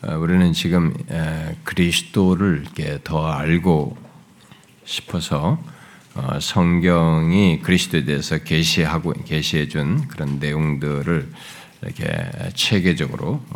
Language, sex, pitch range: Korean, male, 75-95 Hz